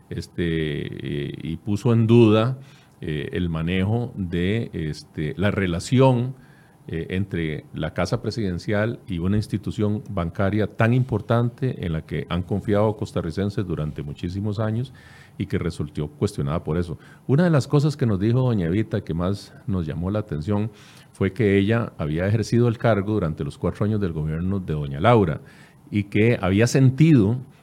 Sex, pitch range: male, 95-130 Hz